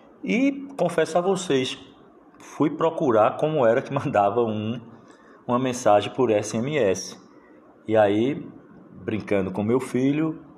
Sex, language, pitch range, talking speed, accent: male, Portuguese, 100-130 Hz, 115 wpm, Brazilian